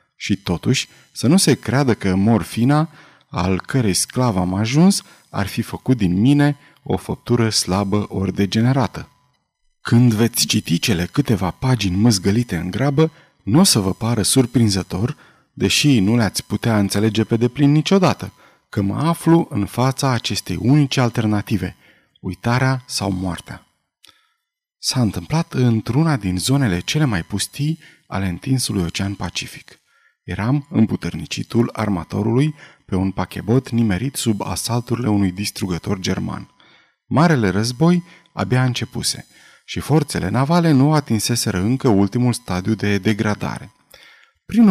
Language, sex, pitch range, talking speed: Romanian, male, 100-140 Hz, 130 wpm